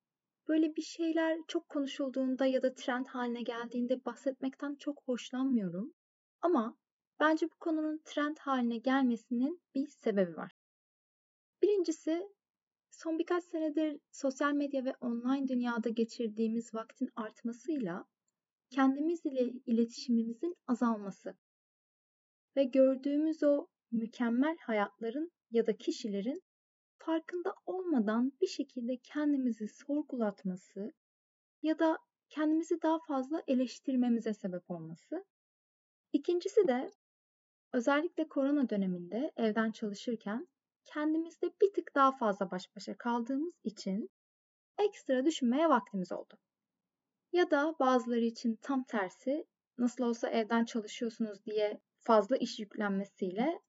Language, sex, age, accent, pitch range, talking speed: Turkish, female, 30-49, native, 230-310 Hz, 105 wpm